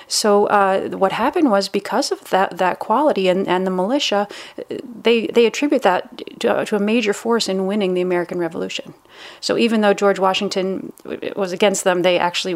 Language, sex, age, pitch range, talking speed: English, female, 30-49, 180-215 Hz, 180 wpm